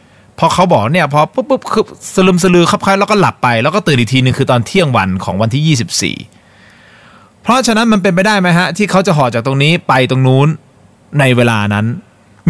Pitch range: 130-185 Hz